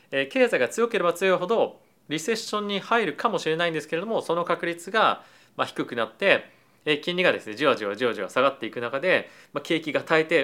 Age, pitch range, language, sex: 30-49, 135-180 Hz, Japanese, male